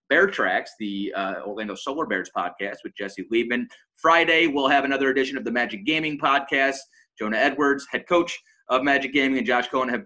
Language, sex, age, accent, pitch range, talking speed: English, male, 30-49, American, 120-175 Hz, 190 wpm